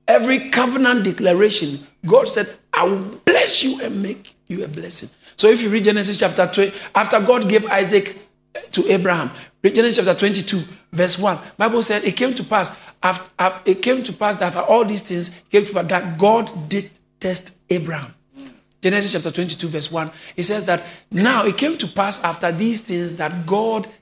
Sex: male